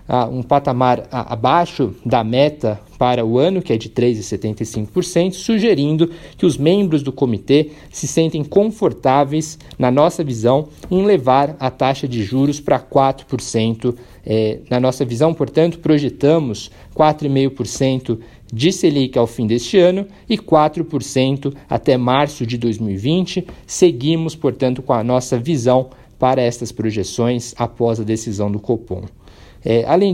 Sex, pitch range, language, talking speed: male, 120-160 Hz, Portuguese, 130 wpm